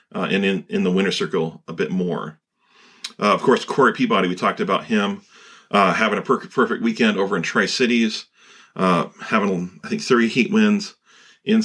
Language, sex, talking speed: English, male, 185 wpm